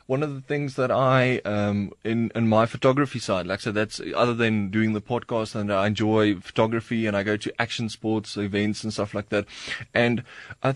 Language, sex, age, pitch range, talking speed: English, male, 20-39, 110-135 Hz, 205 wpm